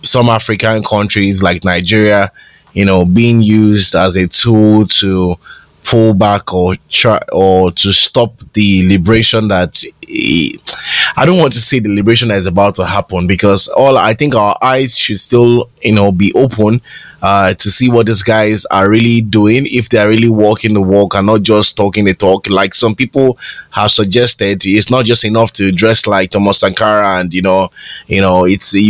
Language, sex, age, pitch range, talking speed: English, male, 20-39, 100-125 Hz, 185 wpm